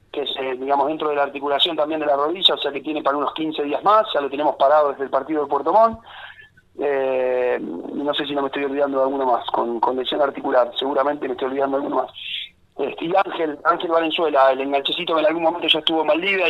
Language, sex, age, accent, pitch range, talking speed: Spanish, male, 30-49, Argentinian, 140-180 Hz, 245 wpm